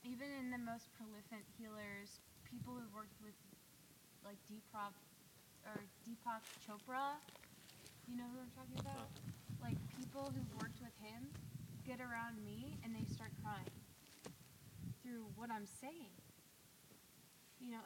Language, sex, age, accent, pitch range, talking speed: English, female, 20-39, American, 190-245 Hz, 130 wpm